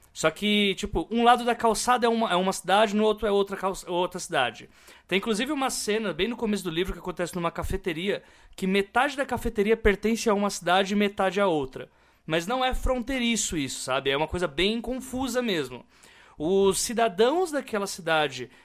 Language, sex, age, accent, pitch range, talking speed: Portuguese, male, 20-39, Brazilian, 180-245 Hz, 195 wpm